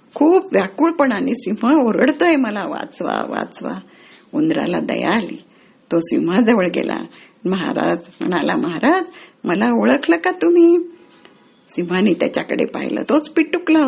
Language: Marathi